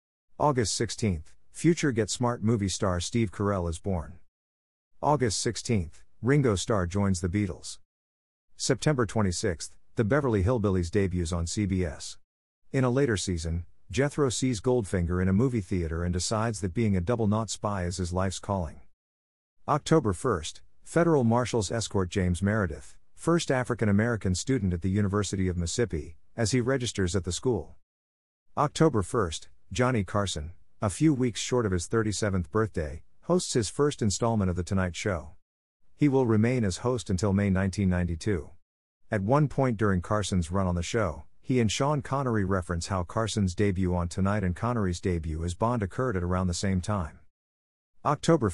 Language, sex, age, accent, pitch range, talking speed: English, male, 50-69, American, 90-115 Hz, 160 wpm